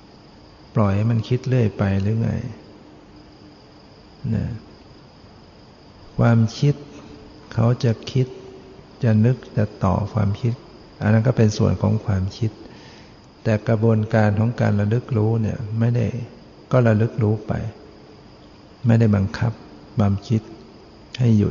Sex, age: male, 60-79